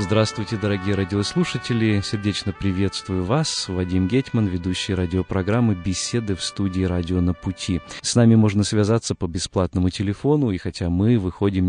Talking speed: 140 wpm